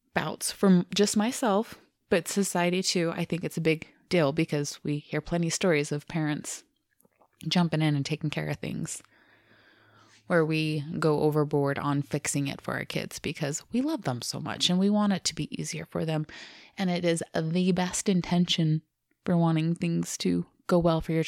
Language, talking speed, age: English, 190 wpm, 20-39